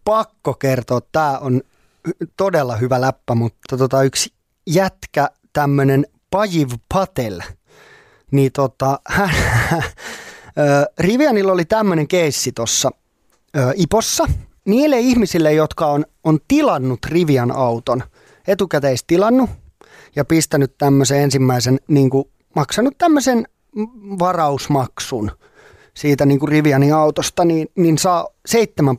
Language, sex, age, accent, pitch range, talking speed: Finnish, male, 30-49, native, 135-195 Hz, 110 wpm